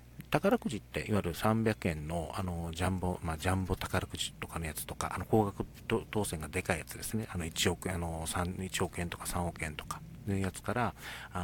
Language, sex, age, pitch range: Japanese, male, 40-59, 80-110 Hz